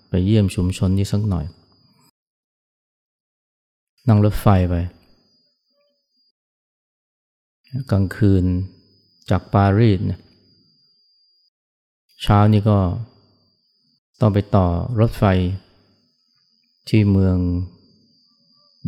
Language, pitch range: Thai, 95-130 Hz